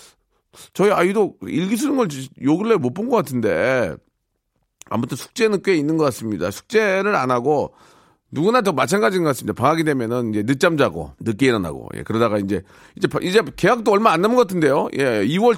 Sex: male